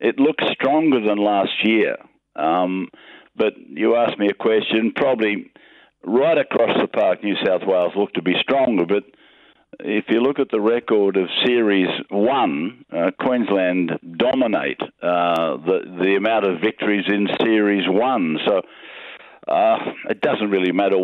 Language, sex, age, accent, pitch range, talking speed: English, male, 50-69, Australian, 95-110 Hz, 150 wpm